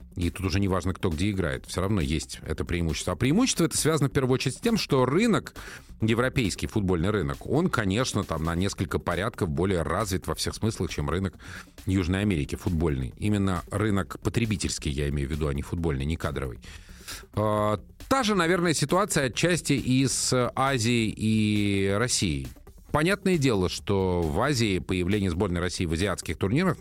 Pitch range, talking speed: 85-120 Hz, 170 wpm